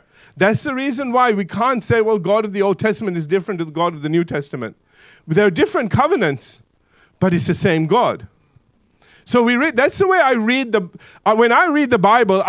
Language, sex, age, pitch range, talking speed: English, male, 50-69, 160-225 Hz, 220 wpm